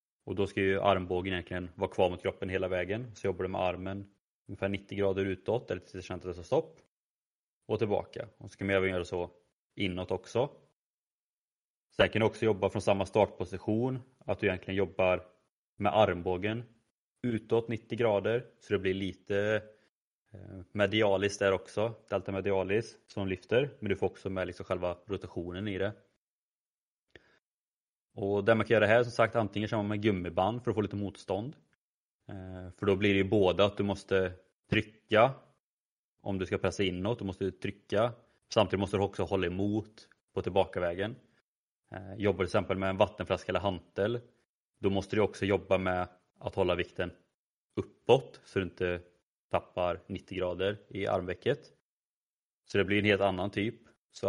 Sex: male